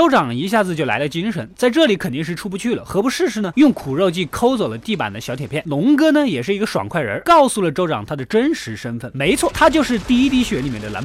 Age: 20-39